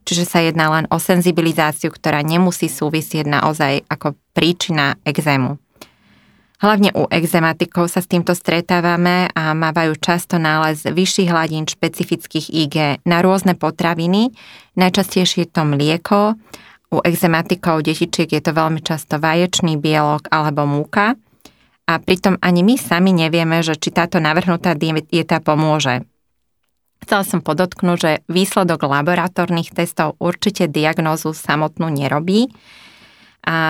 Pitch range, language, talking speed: 155-180 Hz, Slovak, 125 wpm